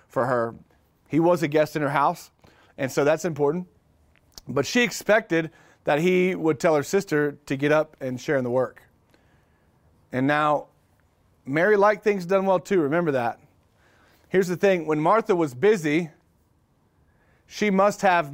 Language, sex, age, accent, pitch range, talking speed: English, male, 40-59, American, 135-195 Hz, 165 wpm